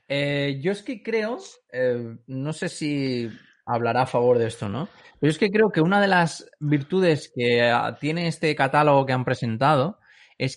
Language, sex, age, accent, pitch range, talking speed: Spanish, male, 30-49, Spanish, 135-190 Hz, 185 wpm